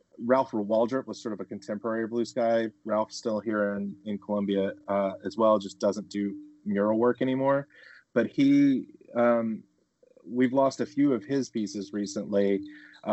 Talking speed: 165 wpm